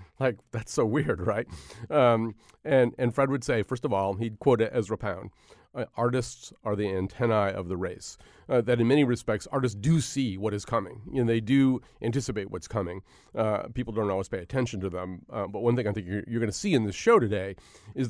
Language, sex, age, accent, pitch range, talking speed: English, male, 40-59, American, 105-125 Hz, 220 wpm